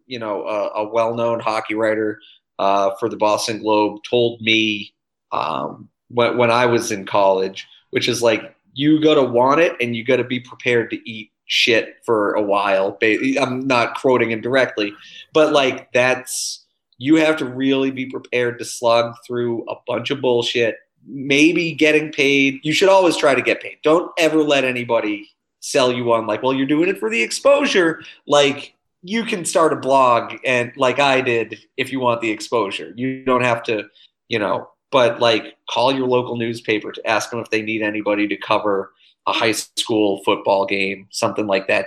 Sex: male